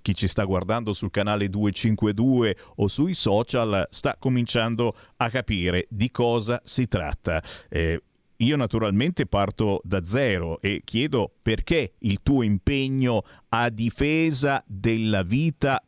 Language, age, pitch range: Italian, 50-69, 95-125 Hz